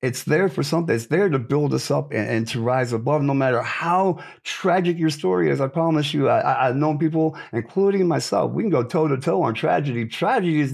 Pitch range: 115-155 Hz